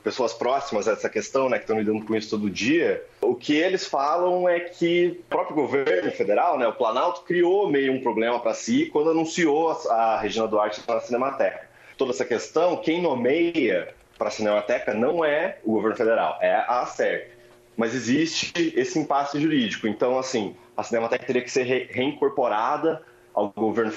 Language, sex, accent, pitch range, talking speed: Portuguese, male, Brazilian, 115-175 Hz, 180 wpm